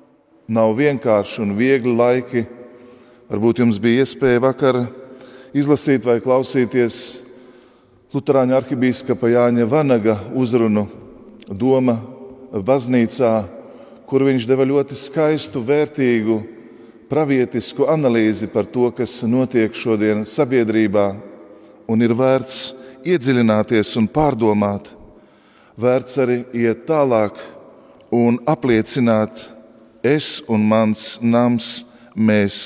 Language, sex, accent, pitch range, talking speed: English, male, Croatian, 110-130 Hz, 95 wpm